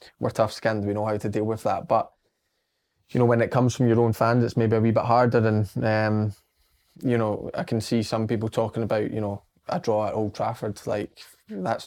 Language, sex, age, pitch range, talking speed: English, male, 20-39, 105-115 Hz, 225 wpm